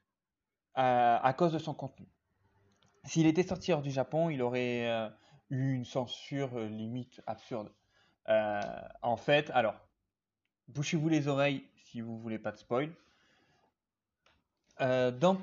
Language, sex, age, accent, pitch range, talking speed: French, male, 20-39, French, 115-150 Hz, 140 wpm